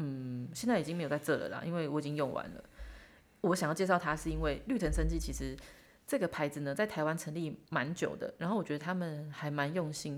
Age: 20-39